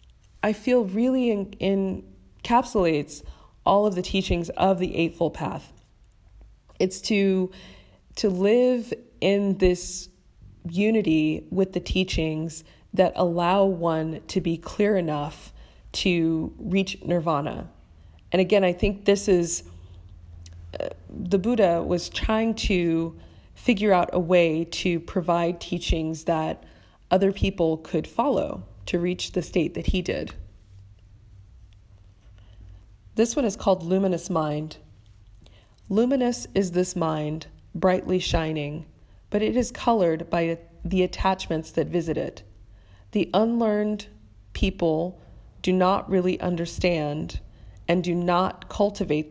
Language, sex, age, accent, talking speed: English, female, 20-39, American, 115 wpm